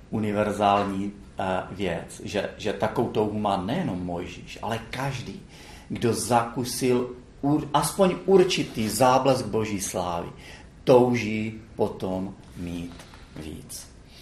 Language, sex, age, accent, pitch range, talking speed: Czech, male, 40-59, native, 100-130 Hz, 95 wpm